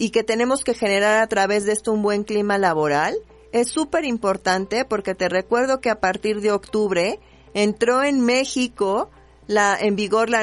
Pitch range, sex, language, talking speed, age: 195-245 Hz, female, Spanish, 180 wpm, 40-59